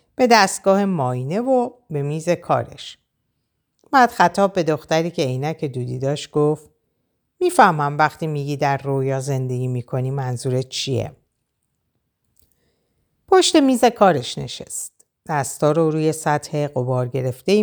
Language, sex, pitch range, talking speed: Persian, female, 135-185 Hz, 120 wpm